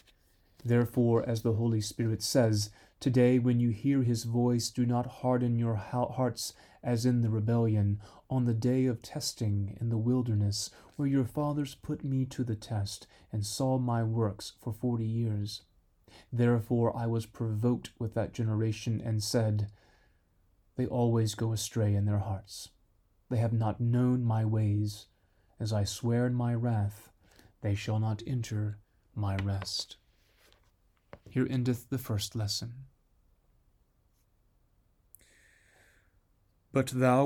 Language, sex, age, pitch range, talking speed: English, male, 30-49, 105-125 Hz, 135 wpm